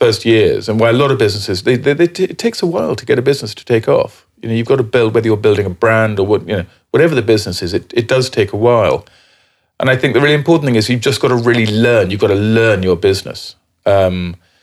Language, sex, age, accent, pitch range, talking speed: English, male, 40-59, British, 90-120 Hz, 285 wpm